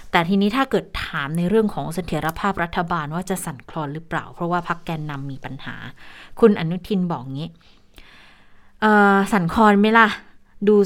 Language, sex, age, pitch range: Thai, female, 20-39, 160-210 Hz